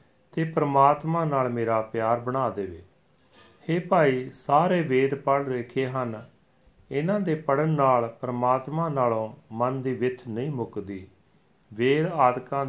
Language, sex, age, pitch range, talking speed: Punjabi, male, 40-59, 115-140 Hz, 130 wpm